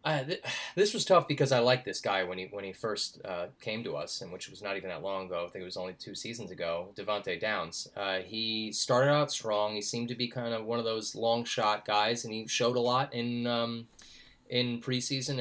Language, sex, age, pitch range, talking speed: English, male, 30-49, 100-125 Hz, 245 wpm